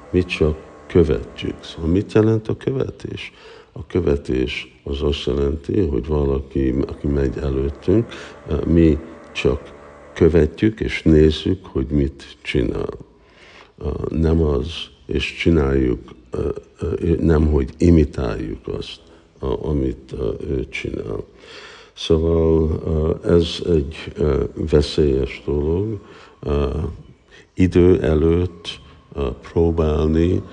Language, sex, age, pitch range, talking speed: Hungarian, male, 50-69, 70-85 Hz, 90 wpm